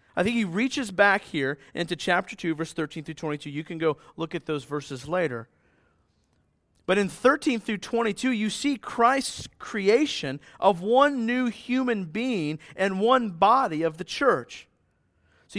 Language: English